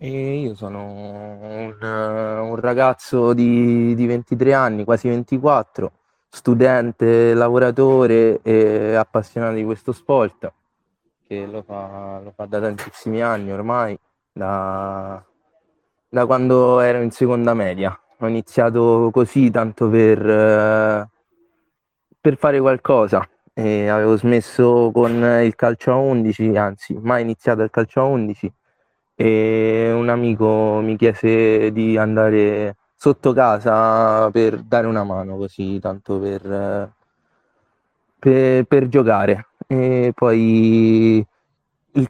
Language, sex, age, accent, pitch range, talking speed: Italian, male, 20-39, native, 105-120 Hz, 110 wpm